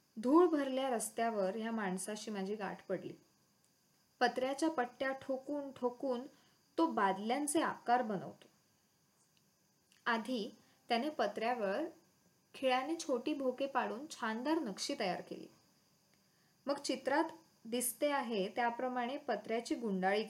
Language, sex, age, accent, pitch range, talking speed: English, female, 20-39, Indian, 200-280 Hz, 100 wpm